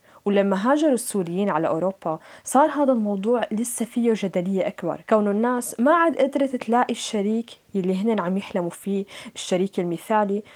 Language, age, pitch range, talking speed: Arabic, 20-39, 190-275 Hz, 150 wpm